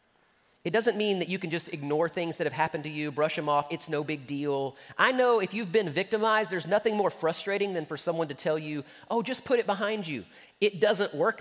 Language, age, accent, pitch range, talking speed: English, 30-49, American, 165-230 Hz, 240 wpm